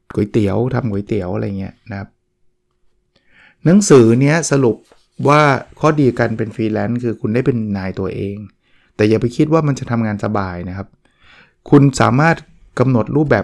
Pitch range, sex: 110-130 Hz, male